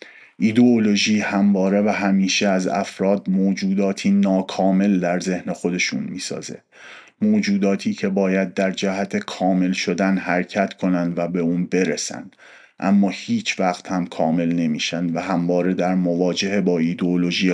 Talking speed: 125 wpm